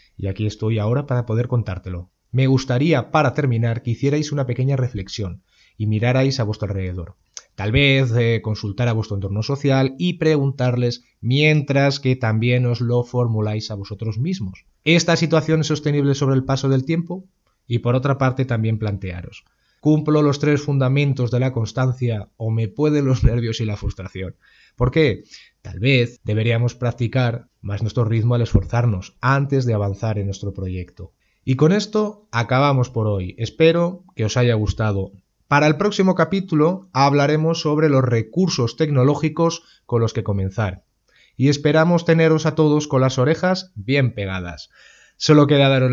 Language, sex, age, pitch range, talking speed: Spanish, male, 30-49, 110-145 Hz, 160 wpm